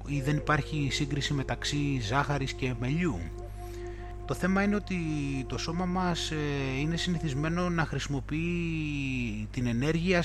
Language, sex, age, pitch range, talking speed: Greek, male, 20-39, 105-155 Hz, 125 wpm